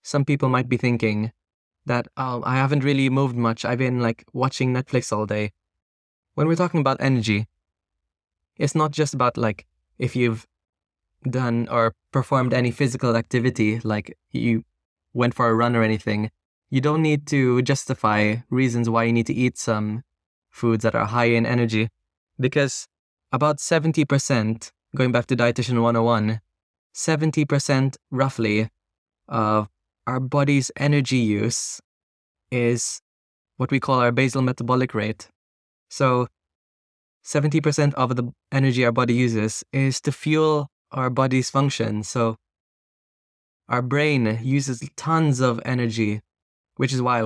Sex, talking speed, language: male, 135 wpm, Italian